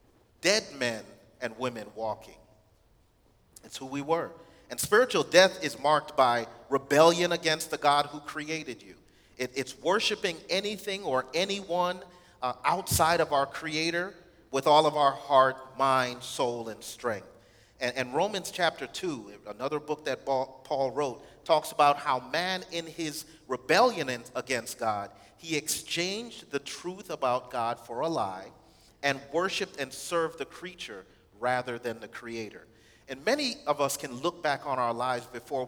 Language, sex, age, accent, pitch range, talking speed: English, male, 40-59, American, 120-175 Hz, 155 wpm